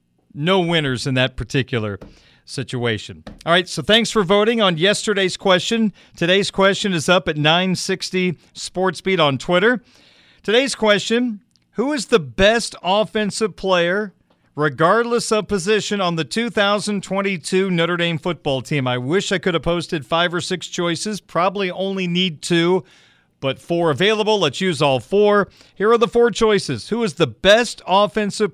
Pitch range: 160-200 Hz